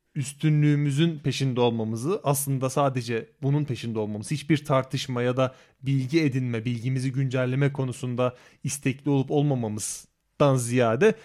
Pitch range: 125-165 Hz